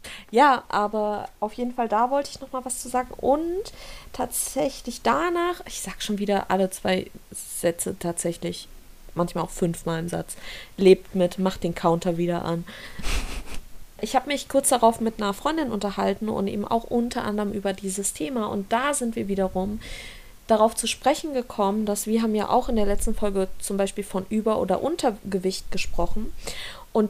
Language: German